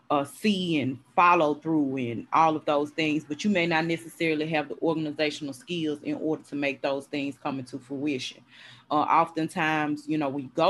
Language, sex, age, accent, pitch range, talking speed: English, female, 20-39, American, 145-170 Hz, 190 wpm